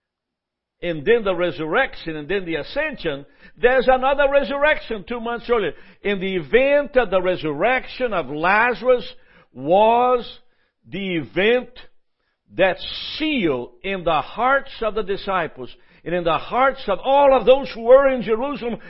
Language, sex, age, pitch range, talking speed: English, male, 60-79, 180-250 Hz, 145 wpm